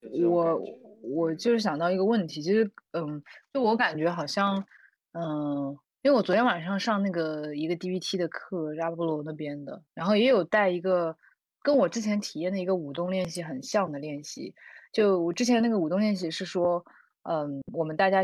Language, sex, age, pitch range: Chinese, female, 20-39, 160-205 Hz